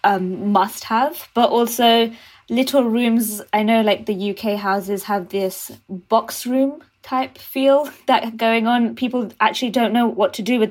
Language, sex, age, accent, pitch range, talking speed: English, female, 20-39, British, 200-230 Hz, 170 wpm